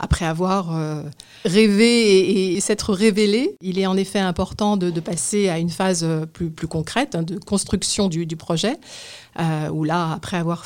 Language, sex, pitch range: French, female, 165-205 Hz